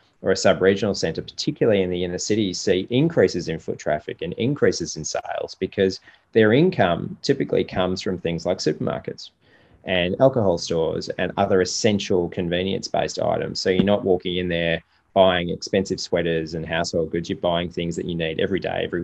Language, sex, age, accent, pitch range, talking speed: English, male, 20-39, Australian, 85-100 Hz, 180 wpm